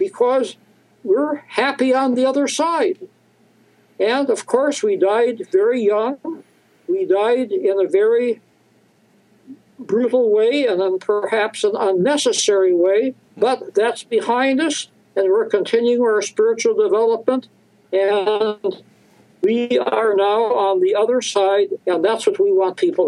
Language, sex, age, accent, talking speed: English, male, 60-79, American, 135 wpm